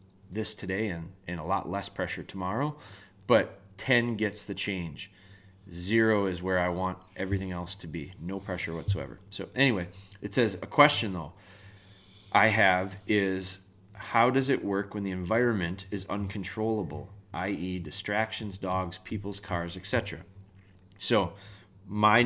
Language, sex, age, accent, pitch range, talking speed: English, male, 30-49, American, 95-110 Hz, 145 wpm